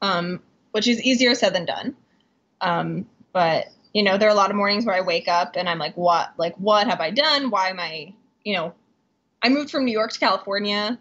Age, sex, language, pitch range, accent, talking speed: 10-29, female, English, 185-230 Hz, American, 230 wpm